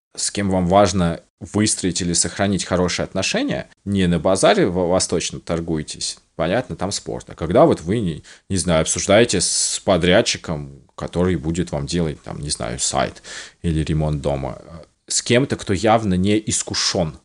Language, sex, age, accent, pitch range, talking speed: Russian, male, 20-39, native, 85-105 Hz, 155 wpm